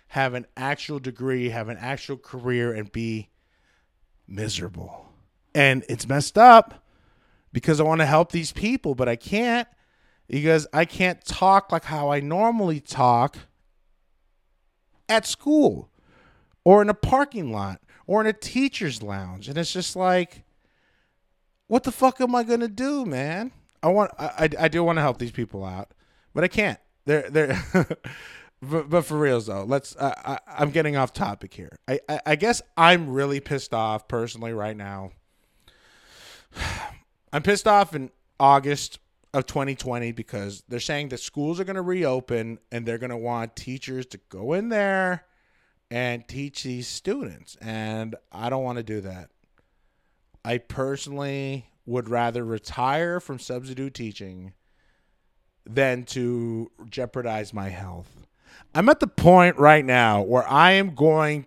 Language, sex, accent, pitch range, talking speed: English, male, American, 115-175 Hz, 150 wpm